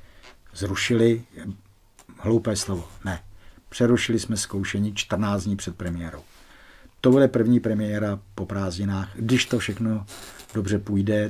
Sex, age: male, 50-69